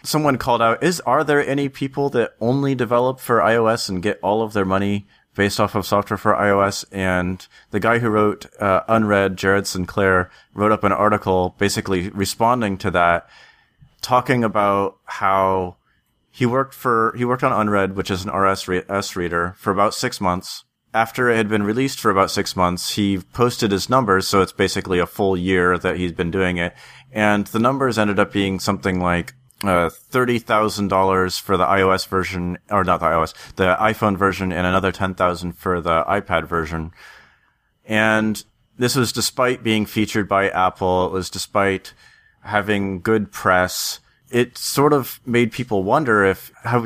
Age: 30-49